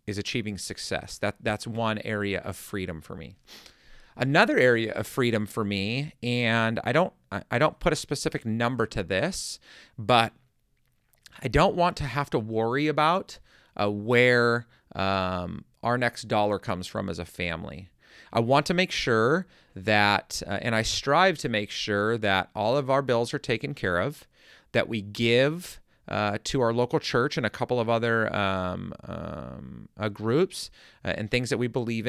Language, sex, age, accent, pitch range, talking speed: English, male, 30-49, American, 105-135 Hz, 175 wpm